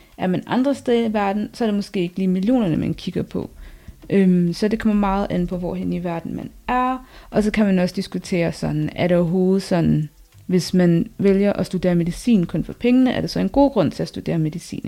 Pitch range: 175-220 Hz